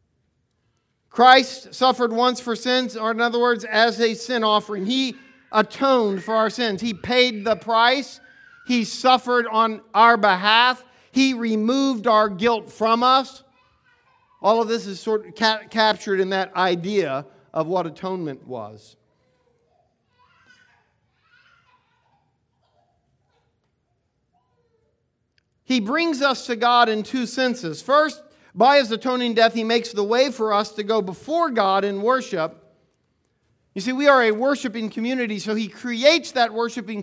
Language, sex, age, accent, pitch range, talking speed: English, male, 50-69, American, 215-260 Hz, 140 wpm